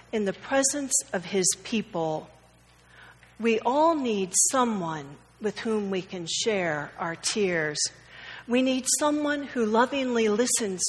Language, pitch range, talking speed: English, 180-250 Hz, 125 wpm